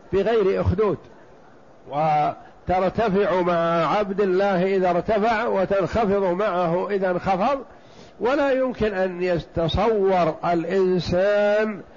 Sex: male